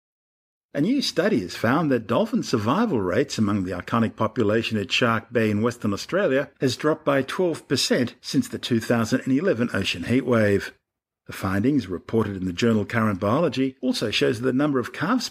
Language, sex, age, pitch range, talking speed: English, male, 50-69, 105-135 Hz, 170 wpm